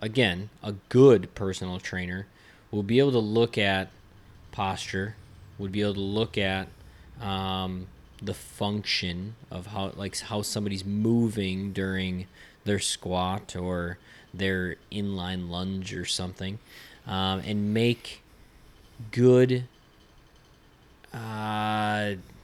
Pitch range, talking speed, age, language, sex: 95-115 Hz, 110 wpm, 20-39, English, male